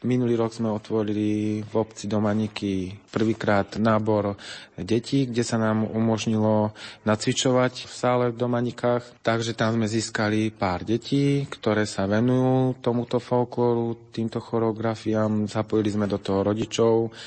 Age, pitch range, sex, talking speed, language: 30-49, 105-115 Hz, male, 130 wpm, Slovak